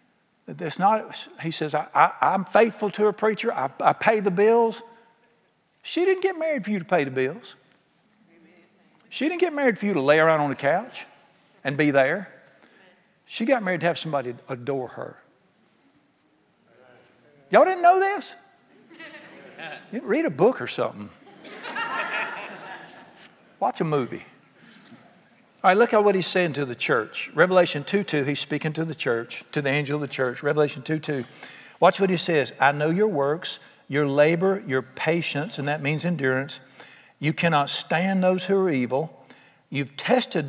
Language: English